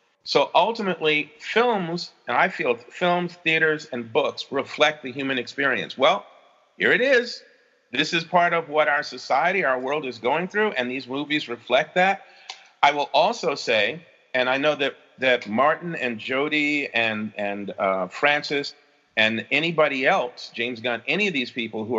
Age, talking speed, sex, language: 40-59, 165 wpm, male, English